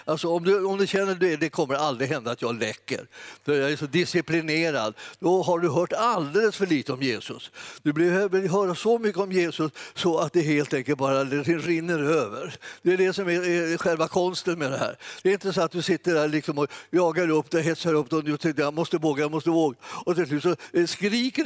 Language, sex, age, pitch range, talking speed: Swedish, male, 50-69, 130-175 Hz, 240 wpm